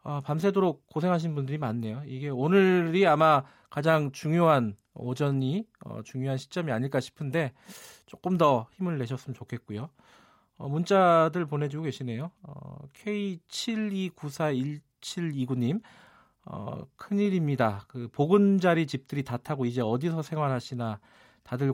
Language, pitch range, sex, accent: Korean, 120-175 Hz, male, native